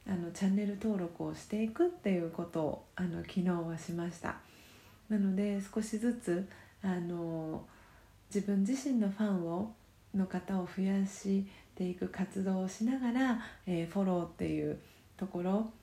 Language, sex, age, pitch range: Japanese, female, 40-59, 180-230 Hz